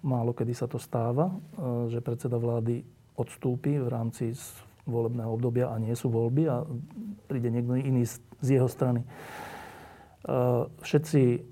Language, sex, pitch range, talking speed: Slovak, male, 120-145 Hz, 130 wpm